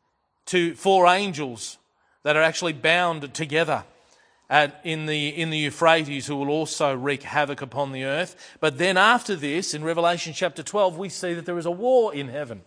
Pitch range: 140-170 Hz